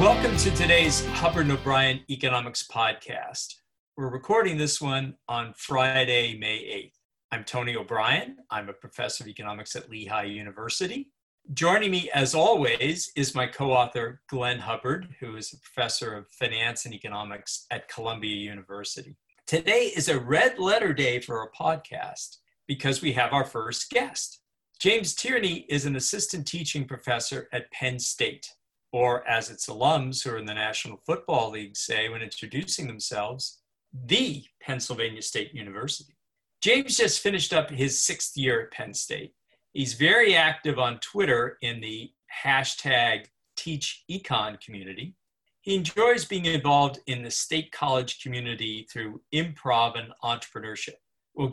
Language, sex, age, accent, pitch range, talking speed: English, male, 40-59, American, 115-150 Hz, 145 wpm